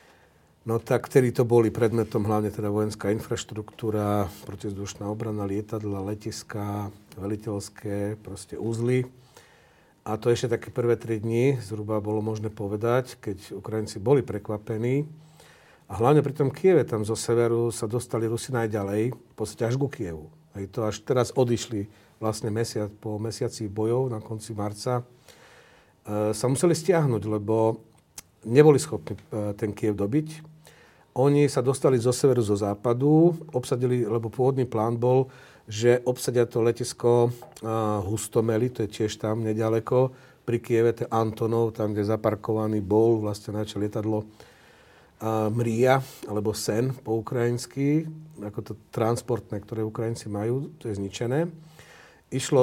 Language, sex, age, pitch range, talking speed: Slovak, male, 50-69, 105-125 Hz, 135 wpm